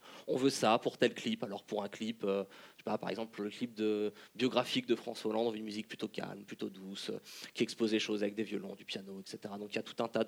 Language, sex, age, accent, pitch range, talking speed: French, male, 20-39, French, 110-130 Hz, 275 wpm